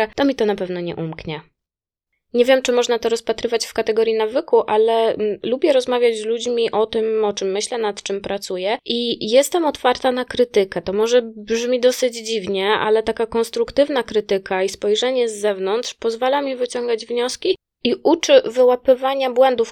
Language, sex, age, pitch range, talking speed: Polish, female, 20-39, 195-250 Hz, 165 wpm